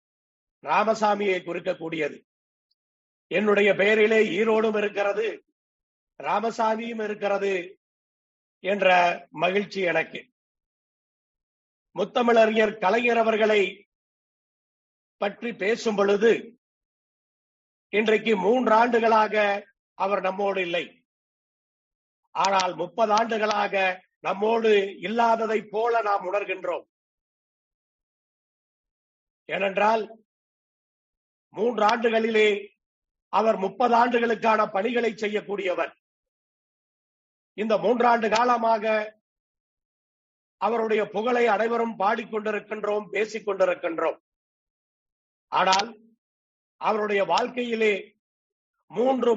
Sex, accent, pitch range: male, native, 185-230 Hz